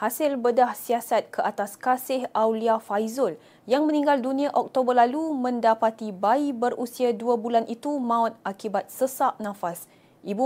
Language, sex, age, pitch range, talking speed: Malay, female, 20-39, 225-270 Hz, 140 wpm